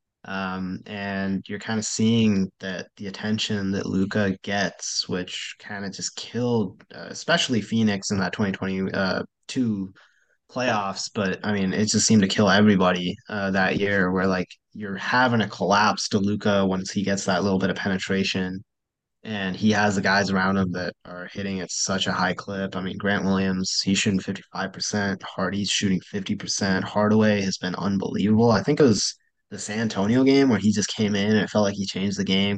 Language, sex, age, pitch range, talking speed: English, male, 20-39, 95-110 Hz, 195 wpm